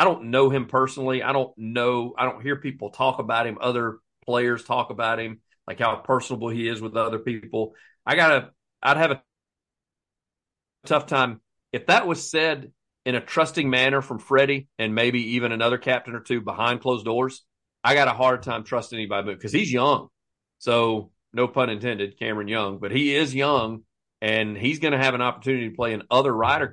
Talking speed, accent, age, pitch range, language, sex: 200 wpm, American, 40-59, 105-130 Hz, English, male